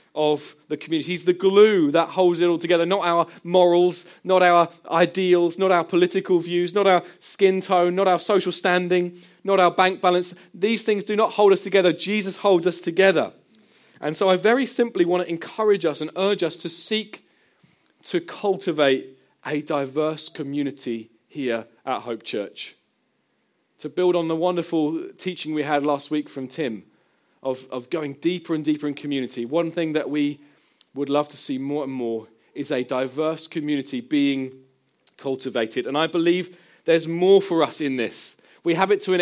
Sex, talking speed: male, 180 wpm